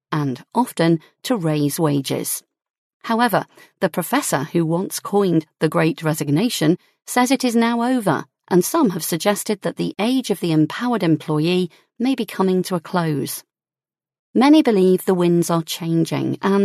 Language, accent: English, British